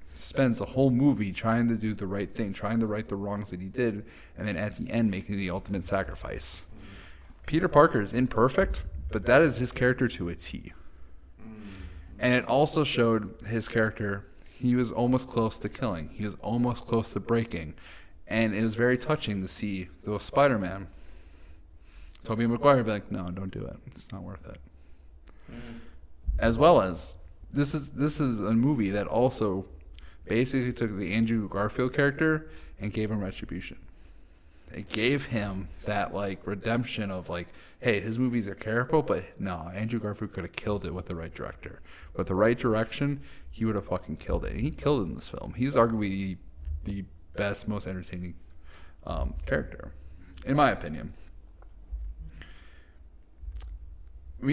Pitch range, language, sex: 80-115 Hz, English, male